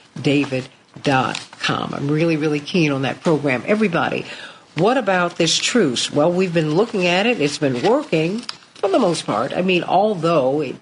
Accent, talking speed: American, 160 wpm